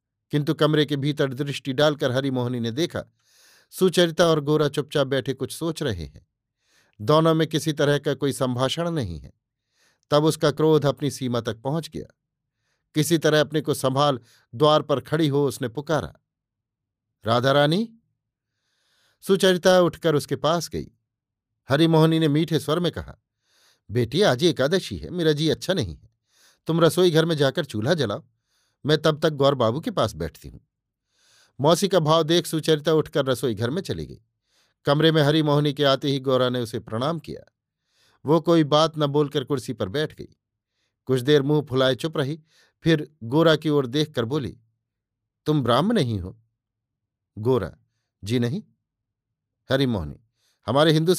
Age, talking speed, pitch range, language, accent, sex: 50-69, 160 wpm, 115-155 Hz, Hindi, native, male